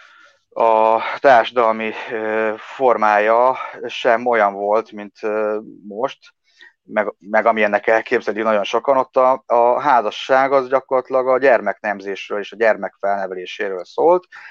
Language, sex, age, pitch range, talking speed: Hungarian, male, 30-49, 100-140 Hz, 110 wpm